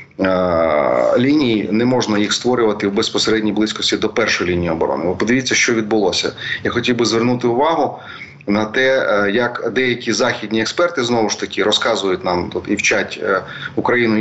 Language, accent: Ukrainian, native